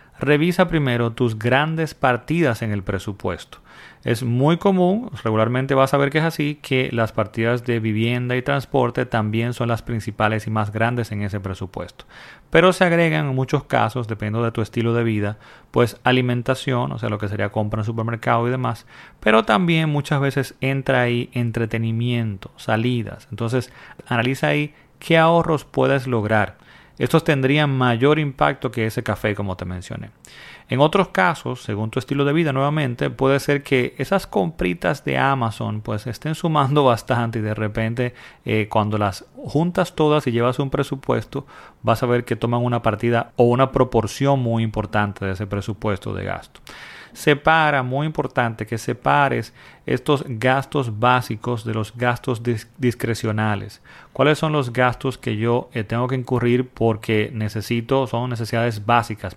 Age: 30-49